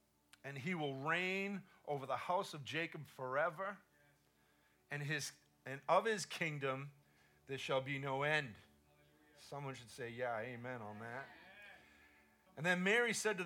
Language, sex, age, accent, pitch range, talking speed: English, male, 40-59, American, 110-165 Hz, 145 wpm